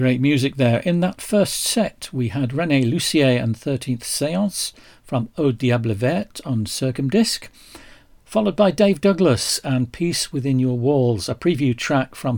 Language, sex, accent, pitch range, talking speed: English, male, British, 120-170 Hz, 160 wpm